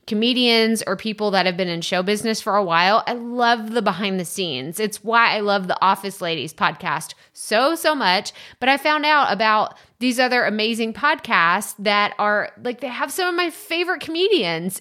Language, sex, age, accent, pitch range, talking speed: English, female, 30-49, American, 195-250 Hz, 195 wpm